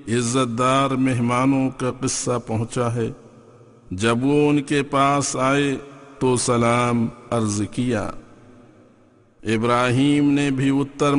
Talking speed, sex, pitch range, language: 90 wpm, male, 115-130 Hz, English